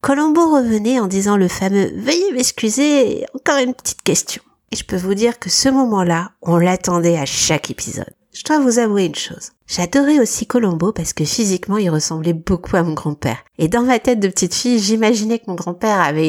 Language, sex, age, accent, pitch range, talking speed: French, female, 60-79, French, 185-255 Hz, 210 wpm